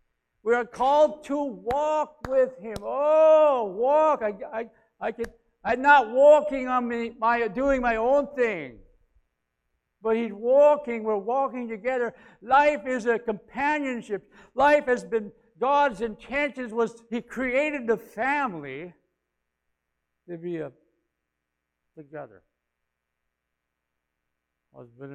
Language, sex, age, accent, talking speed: English, male, 60-79, American, 115 wpm